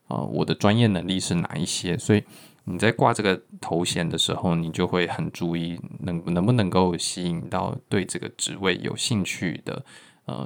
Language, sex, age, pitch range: Chinese, male, 20-39, 90-105 Hz